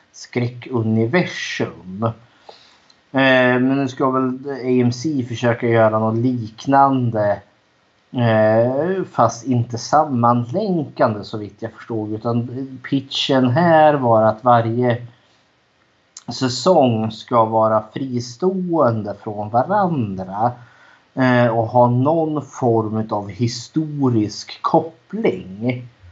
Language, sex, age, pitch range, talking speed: Swedish, male, 30-49, 110-130 Hz, 90 wpm